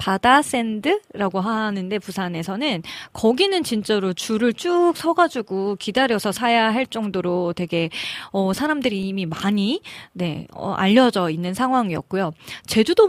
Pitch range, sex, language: 190-285 Hz, female, Korean